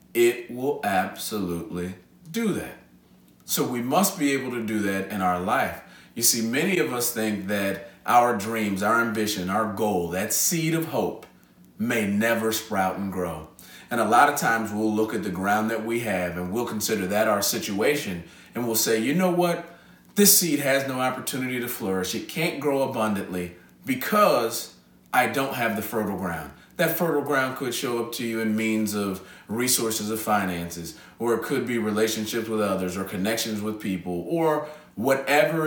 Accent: American